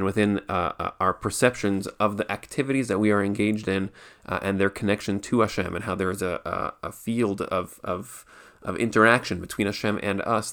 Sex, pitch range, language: male, 100-110 Hz, English